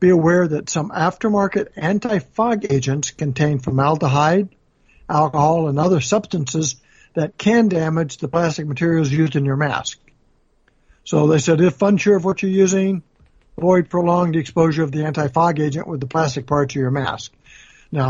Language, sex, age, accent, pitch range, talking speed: English, male, 60-79, American, 145-185 Hz, 155 wpm